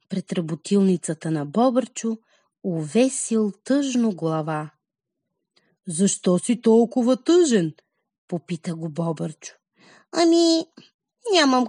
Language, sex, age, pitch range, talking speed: Bulgarian, female, 30-49, 175-275 Hz, 80 wpm